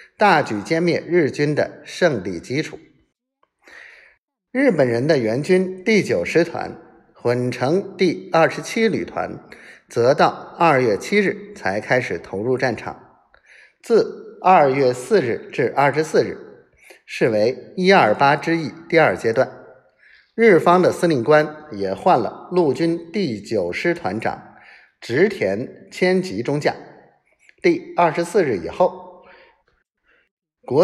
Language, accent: Chinese, native